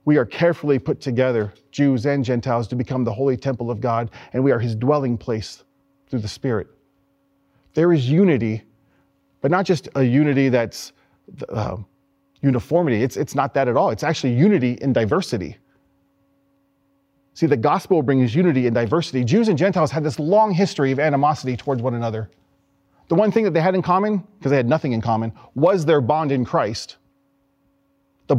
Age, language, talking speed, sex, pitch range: 40-59, English, 180 wpm, male, 125-155 Hz